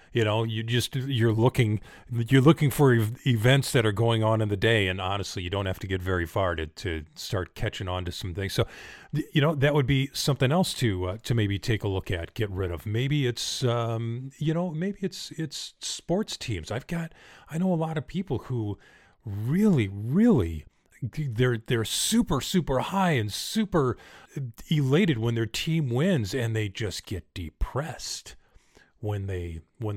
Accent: American